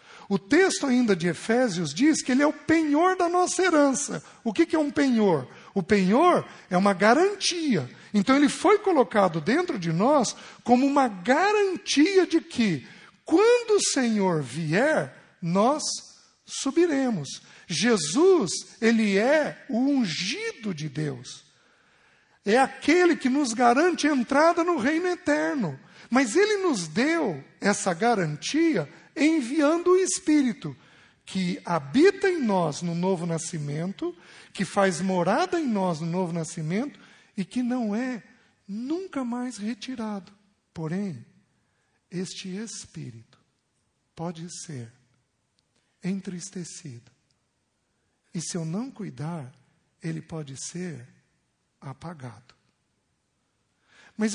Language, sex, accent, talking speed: Portuguese, male, Brazilian, 120 wpm